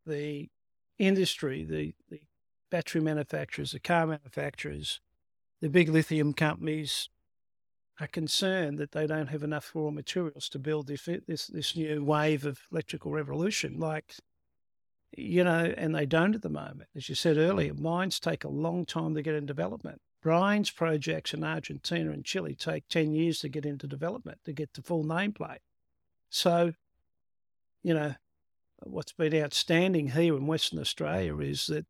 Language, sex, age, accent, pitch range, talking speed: English, male, 50-69, Australian, 140-165 Hz, 160 wpm